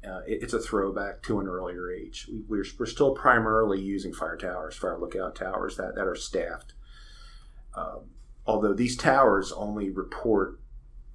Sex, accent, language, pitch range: male, American, English, 95-110 Hz